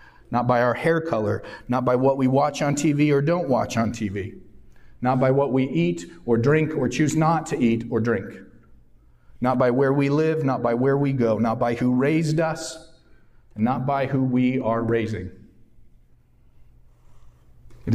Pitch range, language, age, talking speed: 100-125 Hz, English, 40-59, 180 wpm